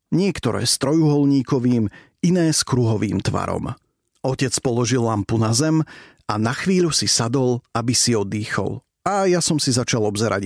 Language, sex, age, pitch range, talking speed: Slovak, male, 40-59, 115-145 Hz, 150 wpm